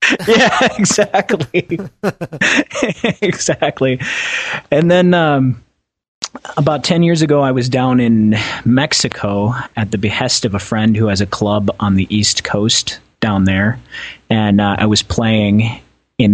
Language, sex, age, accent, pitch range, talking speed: English, male, 30-49, American, 100-115 Hz, 135 wpm